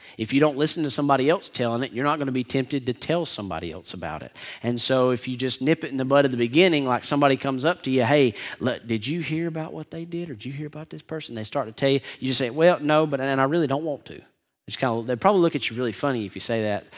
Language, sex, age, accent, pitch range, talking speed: English, male, 30-49, American, 115-150 Hz, 300 wpm